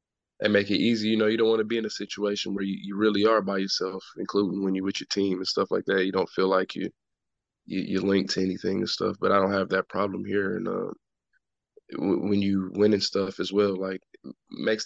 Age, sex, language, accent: 20-39, male, English, American